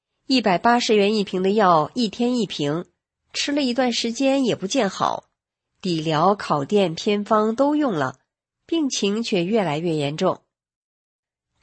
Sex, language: female, Chinese